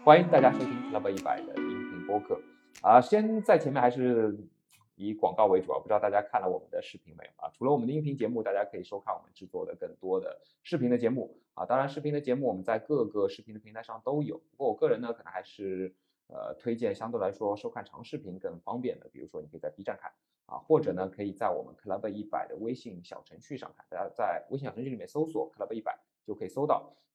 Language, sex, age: Chinese, male, 20-39